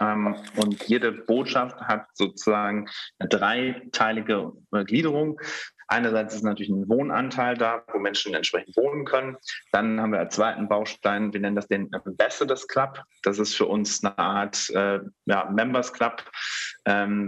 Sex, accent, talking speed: male, German, 155 wpm